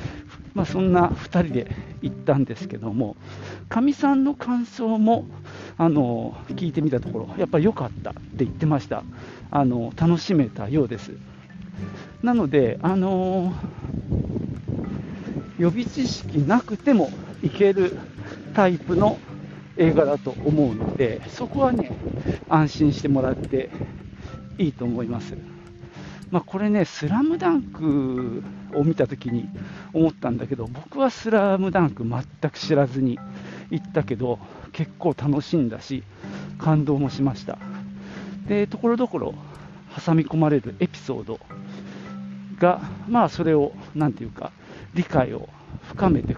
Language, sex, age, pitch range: Japanese, male, 50-69, 130-195 Hz